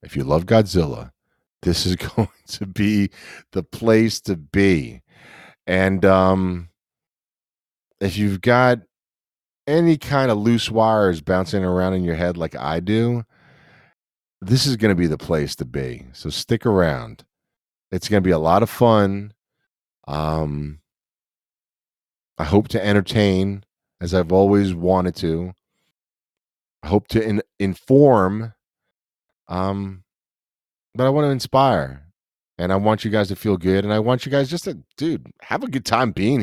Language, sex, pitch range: English, male, 90-115 Hz